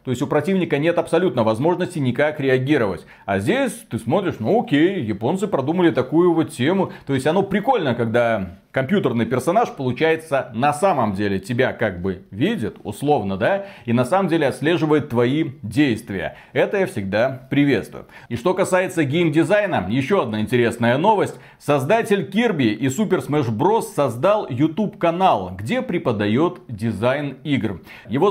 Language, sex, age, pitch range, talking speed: Russian, male, 40-59, 125-195 Hz, 150 wpm